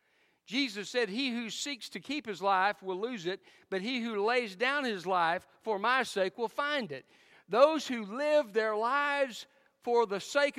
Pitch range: 145-215 Hz